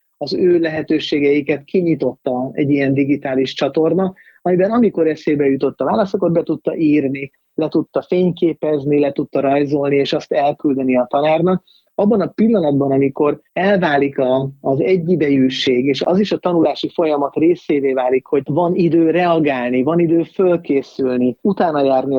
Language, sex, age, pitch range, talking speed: Hungarian, male, 30-49, 135-175 Hz, 140 wpm